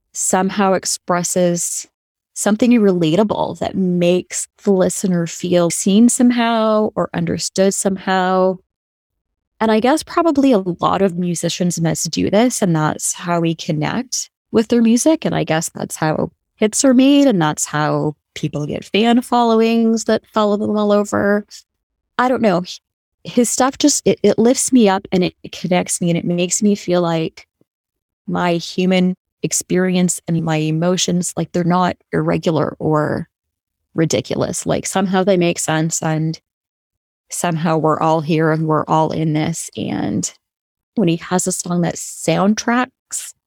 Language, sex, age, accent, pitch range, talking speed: English, female, 20-39, American, 165-210 Hz, 150 wpm